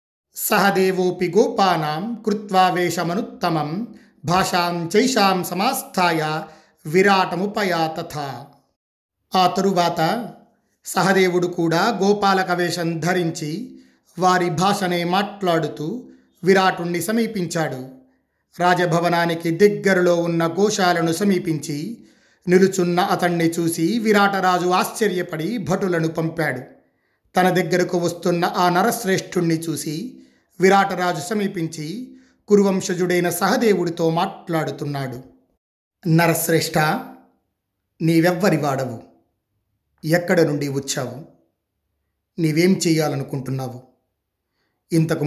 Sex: male